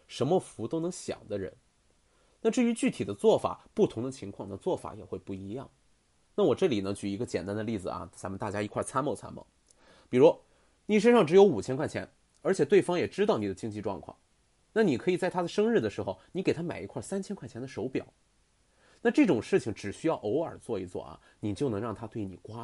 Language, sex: Chinese, male